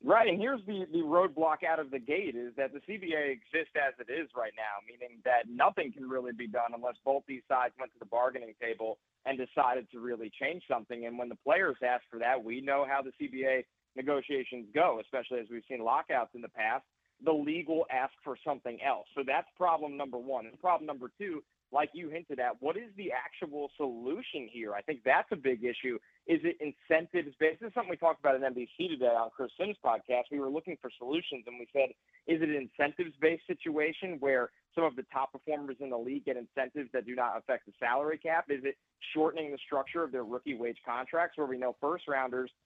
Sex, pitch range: male, 125-155 Hz